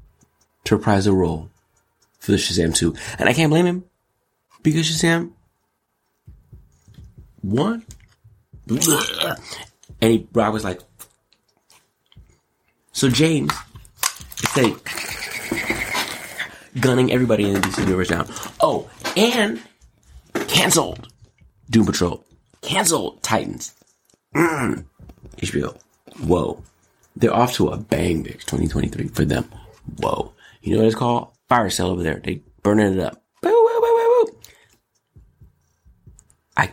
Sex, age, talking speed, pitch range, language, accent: male, 30-49, 115 wpm, 95-120 Hz, English, American